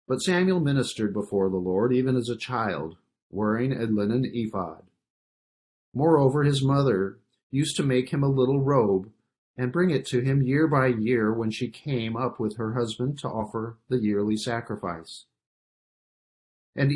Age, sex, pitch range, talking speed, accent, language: 50-69, male, 110-135 Hz, 160 wpm, American, English